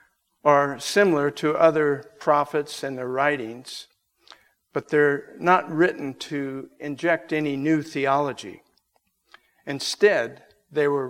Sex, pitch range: male, 135-170 Hz